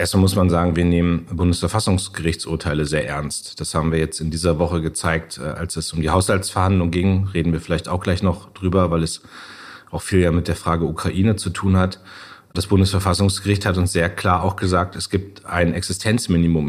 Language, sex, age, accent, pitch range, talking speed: German, male, 30-49, German, 85-95 Hz, 195 wpm